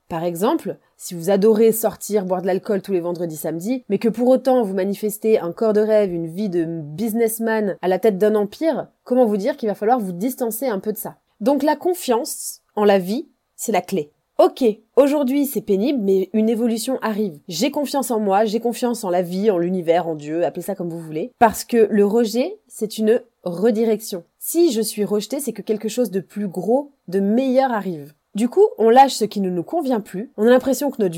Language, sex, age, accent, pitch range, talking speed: French, female, 20-39, French, 190-250 Hz, 220 wpm